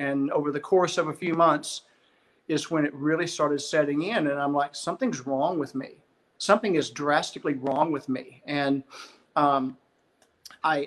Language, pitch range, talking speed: English, 145-185 Hz, 170 wpm